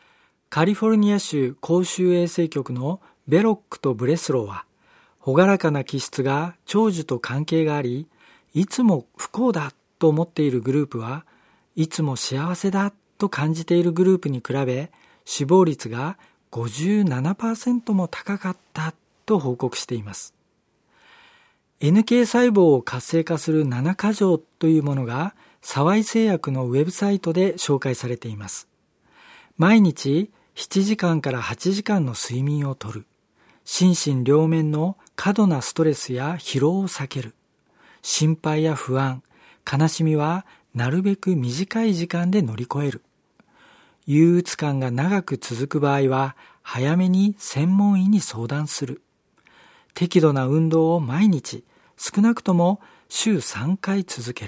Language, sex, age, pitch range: Japanese, male, 40-59, 135-185 Hz